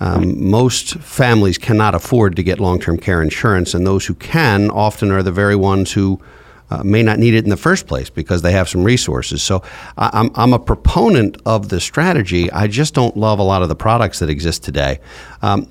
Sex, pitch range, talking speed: male, 95-125 Hz, 205 wpm